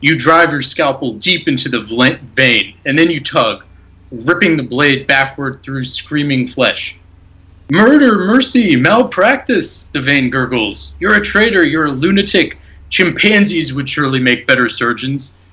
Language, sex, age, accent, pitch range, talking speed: English, male, 30-49, American, 105-140 Hz, 145 wpm